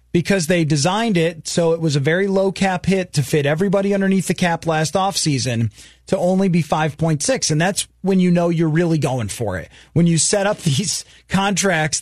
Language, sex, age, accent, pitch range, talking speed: English, male, 30-49, American, 145-195 Hz, 200 wpm